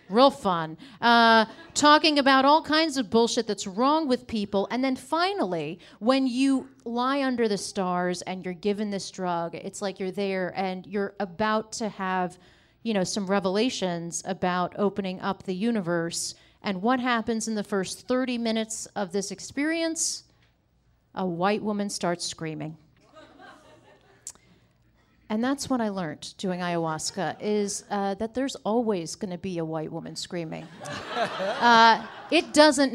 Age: 40-59